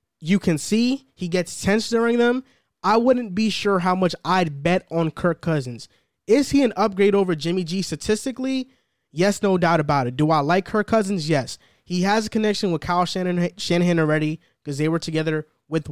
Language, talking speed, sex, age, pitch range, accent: English, 190 wpm, male, 20-39, 155-185 Hz, American